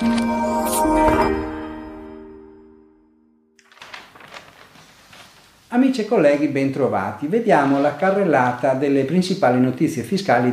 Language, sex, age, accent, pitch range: Italian, male, 50-69, native, 110-170 Hz